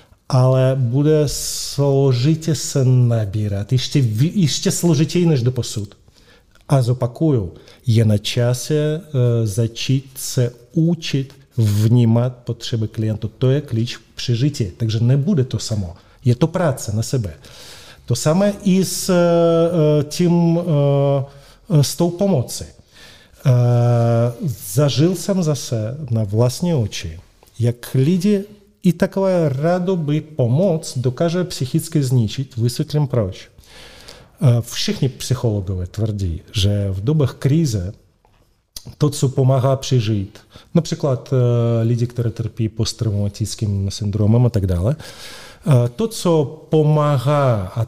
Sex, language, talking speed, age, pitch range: male, Czech, 100 wpm, 40-59, 115-150 Hz